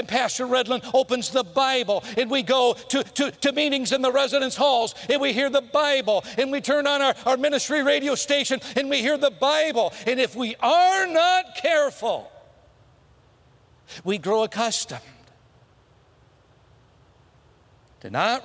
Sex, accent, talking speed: male, American, 145 wpm